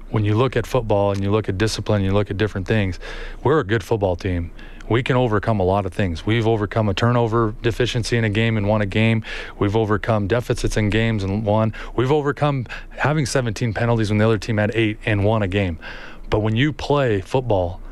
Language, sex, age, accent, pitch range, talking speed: English, male, 30-49, American, 100-120 Hz, 220 wpm